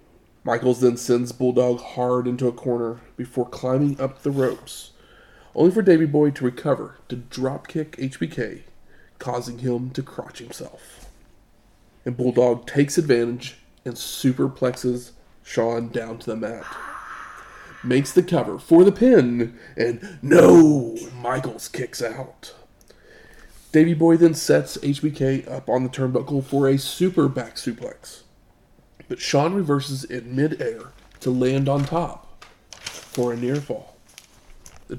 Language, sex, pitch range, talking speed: English, male, 120-140 Hz, 130 wpm